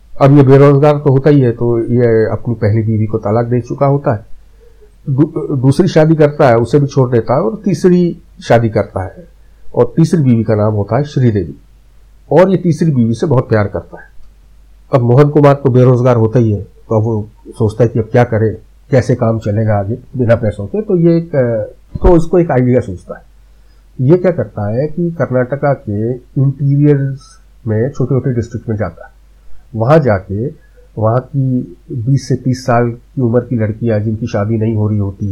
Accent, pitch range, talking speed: native, 110-145 Hz, 195 wpm